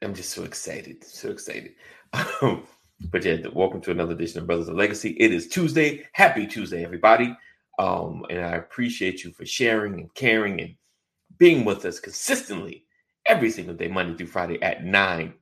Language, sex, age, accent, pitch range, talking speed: English, male, 30-49, American, 90-115 Hz, 175 wpm